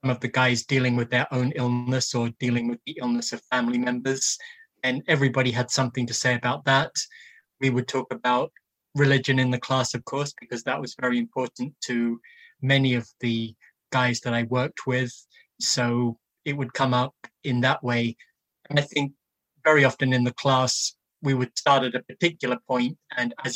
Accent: British